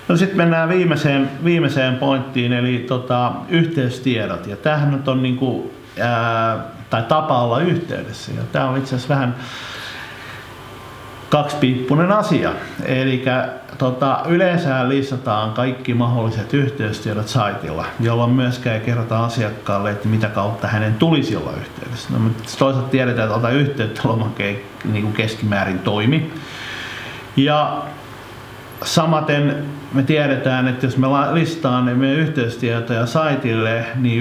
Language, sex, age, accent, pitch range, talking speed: Finnish, male, 50-69, native, 110-135 Hz, 110 wpm